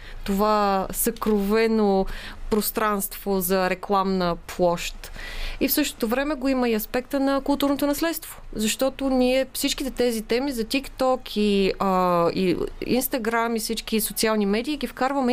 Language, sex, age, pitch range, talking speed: Bulgarian, female, 20-39, 195-255 Hz, 125 wpm